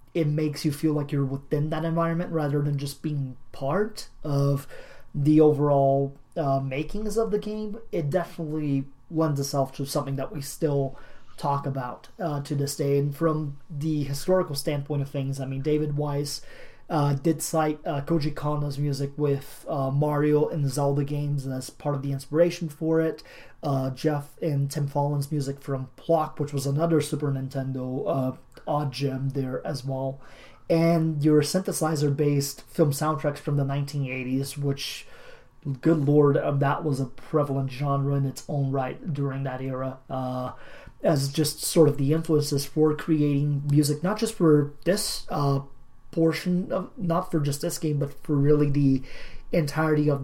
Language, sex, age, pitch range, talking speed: English, male, 30-49, 140-155 Hz, 165 wpm